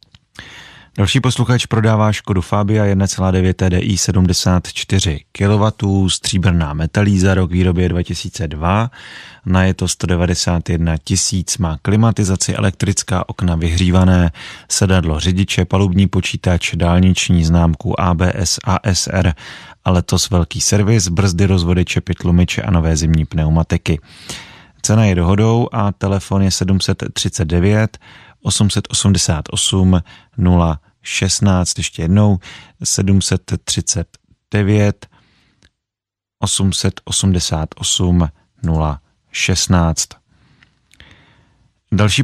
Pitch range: 90-105 Hz